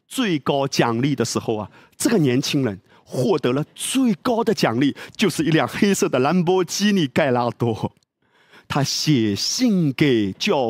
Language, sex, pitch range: Chinese, male, 125-170 Hz